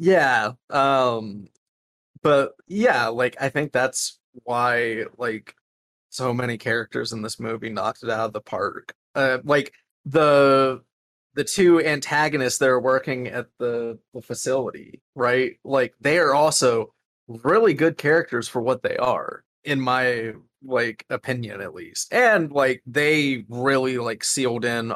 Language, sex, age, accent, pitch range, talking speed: English, male, 30-49, American, 115-140 Hz, 145 wpm